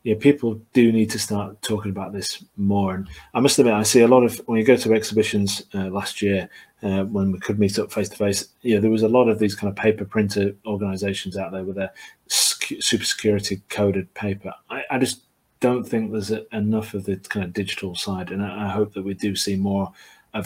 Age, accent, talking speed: 30-49, British, 230 wpm